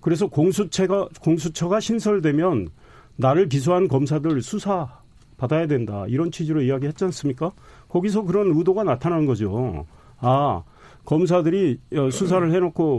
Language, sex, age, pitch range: Korean, male, 40-59, 130-175 Hz